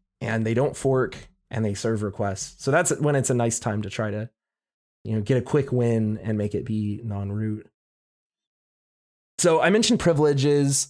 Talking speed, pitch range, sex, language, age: 185 wpm, 115-150 Hz, male, English, 20-39